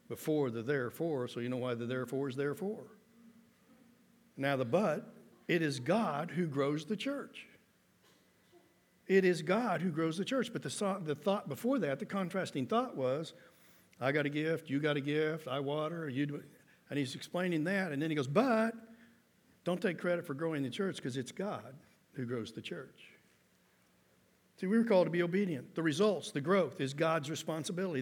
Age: 60-79